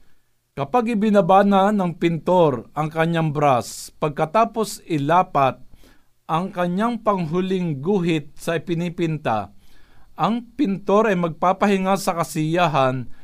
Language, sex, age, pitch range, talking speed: Filipino, male, 50-69, 140-185 Hz, 95 wpm